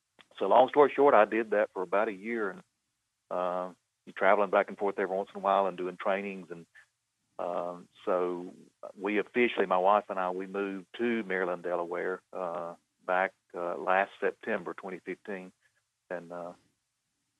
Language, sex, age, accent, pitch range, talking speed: English, male, 50-69, American, 90-105 Hz, 160 wpm